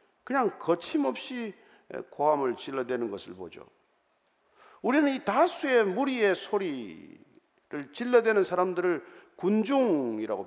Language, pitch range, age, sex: Korean, 220-330 Hz, 50-69, male